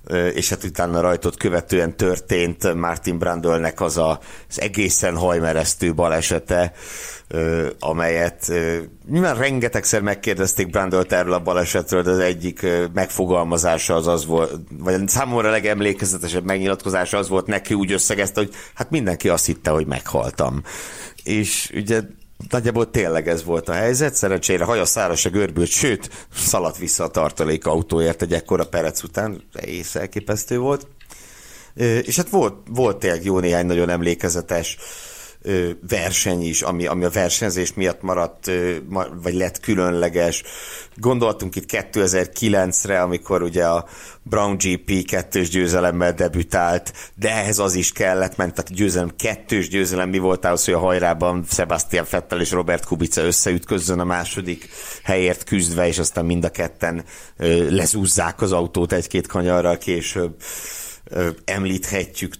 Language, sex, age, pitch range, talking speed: Hungarian, male, 60-79, 85-95 Hz, 135 wpm